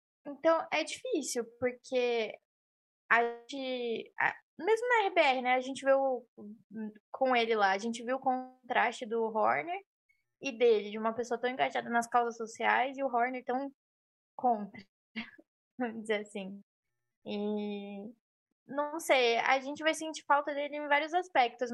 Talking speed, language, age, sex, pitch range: 145 wpm, Portuguese, 10-29, female, 225-285 Hz